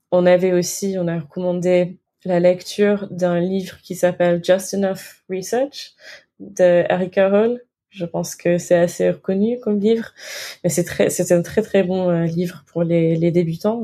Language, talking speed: French, 175 wpm